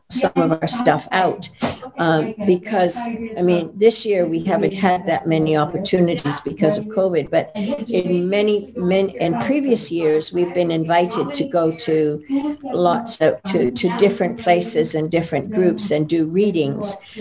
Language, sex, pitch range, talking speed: English, female, 165-205 Hz, 155 wpm